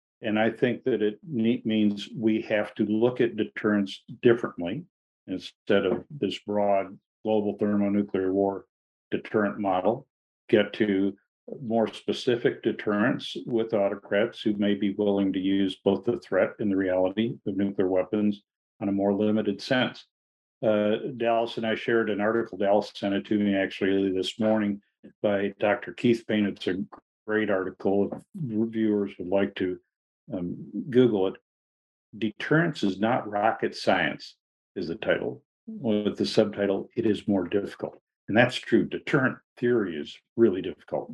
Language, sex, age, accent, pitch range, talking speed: English, male, 50-69, American, 100-115 Hz, 150 wpm